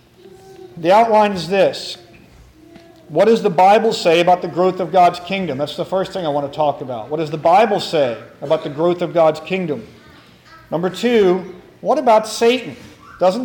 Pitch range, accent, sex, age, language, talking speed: 160-195 Hz, American, male, 40-59, English, 185 wpm